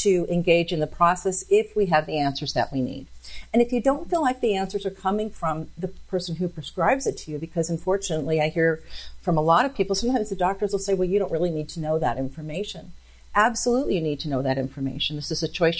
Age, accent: 50-69, American